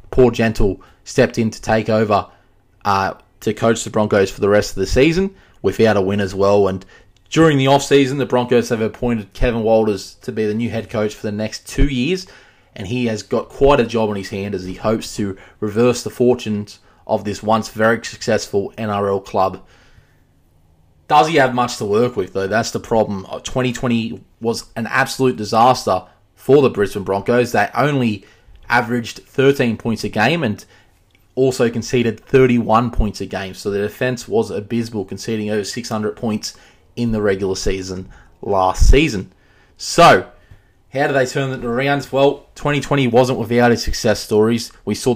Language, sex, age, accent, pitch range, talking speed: English, male, 20-39, Australian, 105-125 Hz, 175 wpm